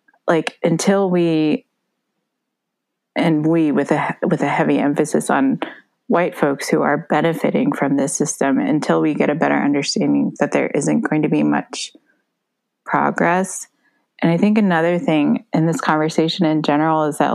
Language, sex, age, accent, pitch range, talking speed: English, female, 20-39, American, 155-205 Hz, 160 wpm